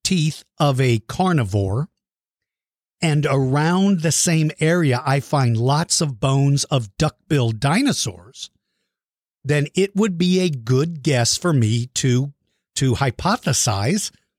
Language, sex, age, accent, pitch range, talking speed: English, male, 50-69, American, 125-170 Hz, 115 wpm